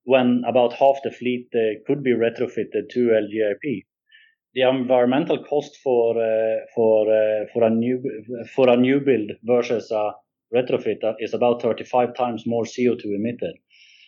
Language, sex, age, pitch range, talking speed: English, male, 30-49, 115-130 Hz, 150 wpm